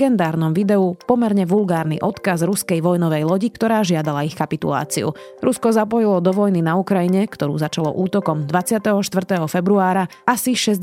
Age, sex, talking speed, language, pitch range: 30-49, female, 140 wpm, Slovak, 175-210 Hz